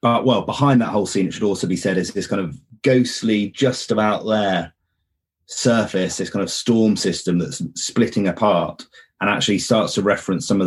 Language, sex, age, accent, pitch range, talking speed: English, male, 30-49, British, 90-105 Hz, 195 wpm